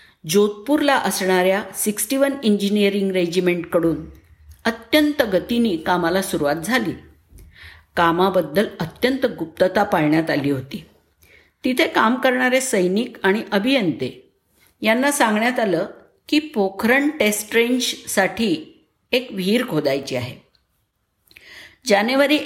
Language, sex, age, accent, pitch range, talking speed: Marathi, female, 50-69, native, 170-245 Hz, 95 wpm